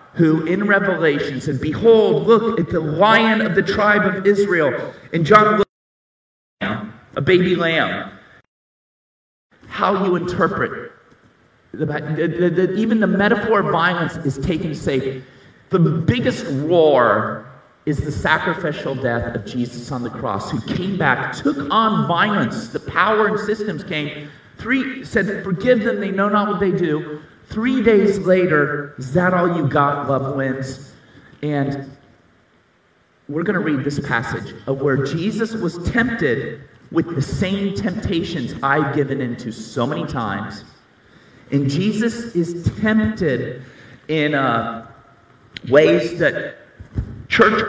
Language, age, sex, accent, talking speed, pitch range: English, 40-59, male, American, 140 wpm, 140-200 Hz